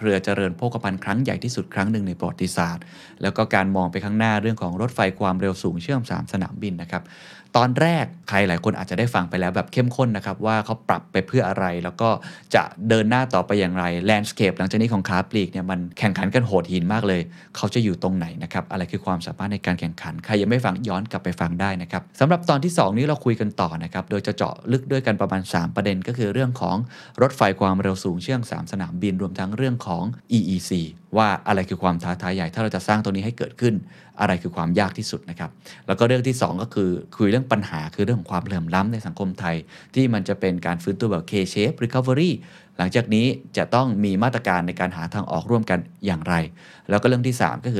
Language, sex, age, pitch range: Thai, male, 20-39, 90-120 Hz